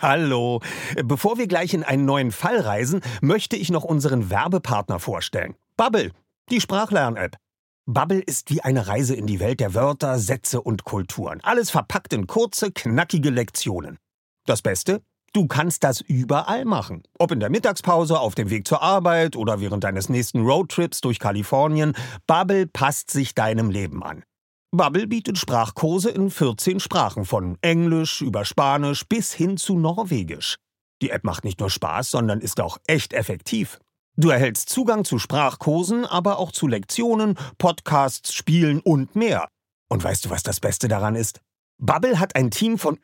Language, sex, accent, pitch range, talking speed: German, male, German, 115-185 Hz, 165 wpm